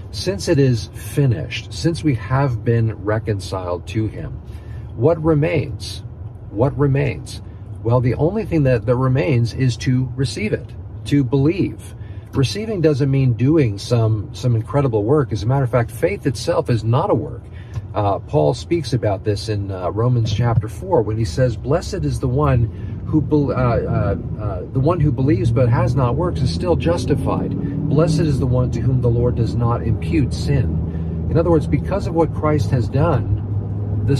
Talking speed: 175 wpm